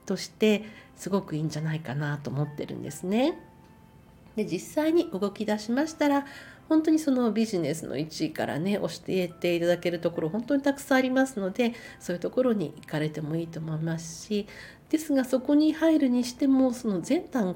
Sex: female